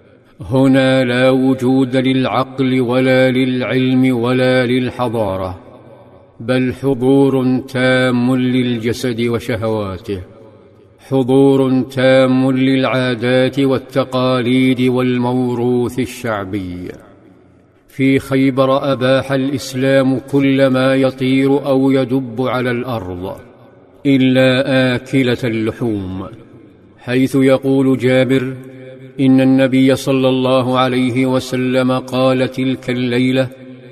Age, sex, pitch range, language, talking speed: 50-69, male, 125-130 Hz, Arabic, 80 wpm